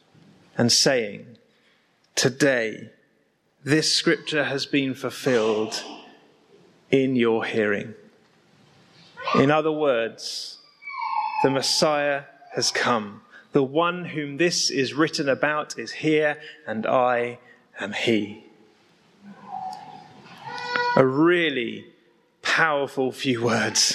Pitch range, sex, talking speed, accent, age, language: 140-175 Hz, male, 90 wpm, British, 30-49, English